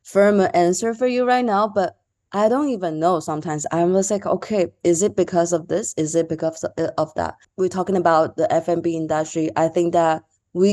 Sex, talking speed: female, 200 wpm